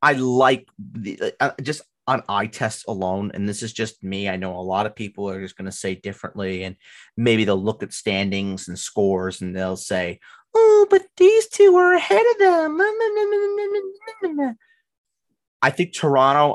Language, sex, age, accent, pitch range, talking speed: English, male, 30-49, American, 95-130 Hz, 175 wpm